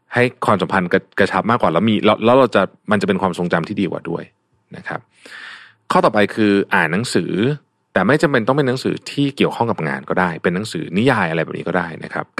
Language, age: Thai, 30-49